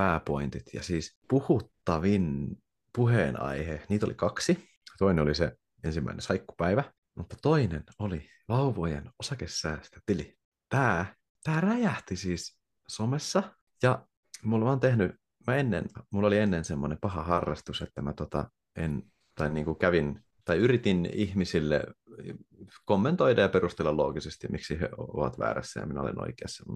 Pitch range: 80-115 Hz